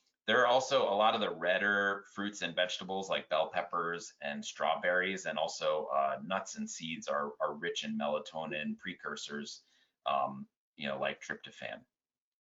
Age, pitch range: 30-49, 85-105 Hz